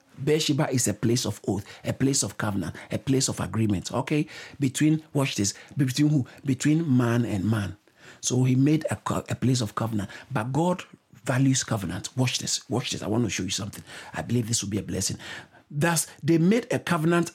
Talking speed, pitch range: 200 wpm, 110-140 Hz